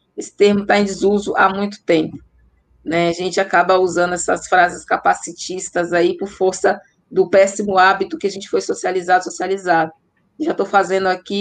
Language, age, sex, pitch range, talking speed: Portuguese, 20-39, female, 195-240 Hz, 170 wpm